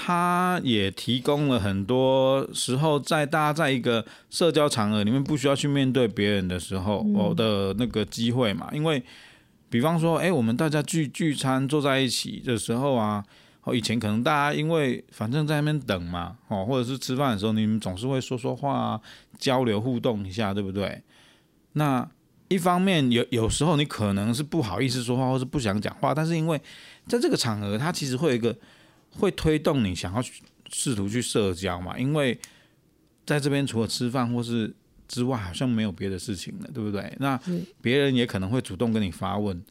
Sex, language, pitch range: male, Chinese, 110-150 Hz